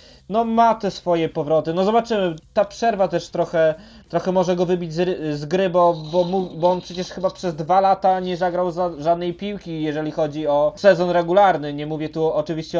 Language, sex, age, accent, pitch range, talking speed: Polish, male, 20-39, native, 170-205 Hz, 190 wpm